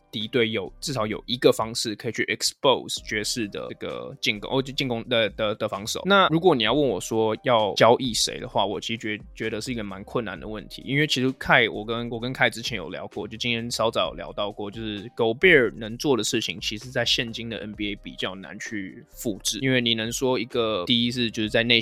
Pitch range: 110-125 Hz